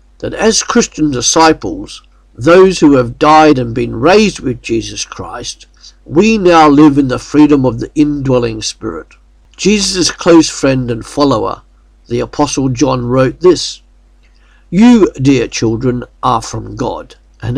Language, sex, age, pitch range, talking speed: English, male, 50-69, 120-165 Hz, 140 wpm